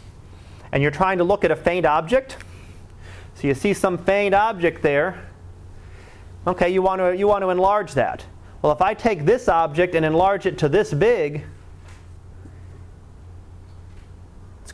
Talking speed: 155 wpm